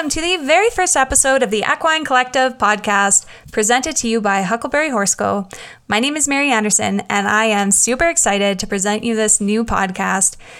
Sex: female